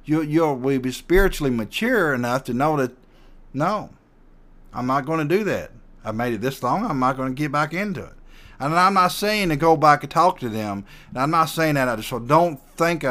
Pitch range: 120-165 Hz